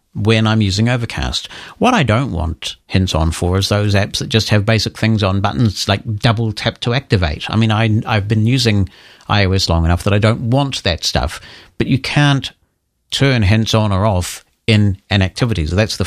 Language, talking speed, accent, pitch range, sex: English, 210 wpm, British, 95-120 Hz, male